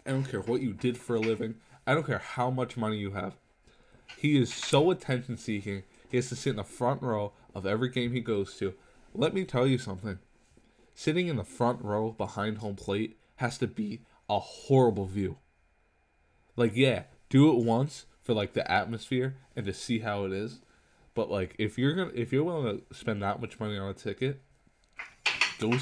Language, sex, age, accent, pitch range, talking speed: English, male, 20-39, American, 100-125 Hz, 200 wpm